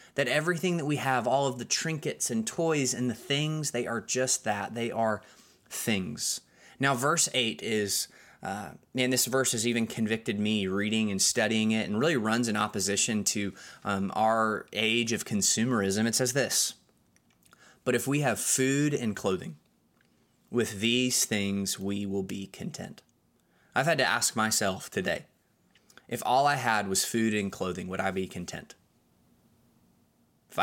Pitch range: 105-125 Hz